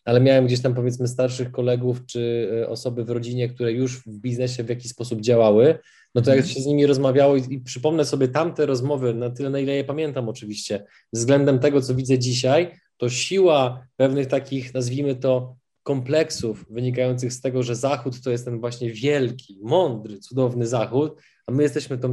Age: 20-39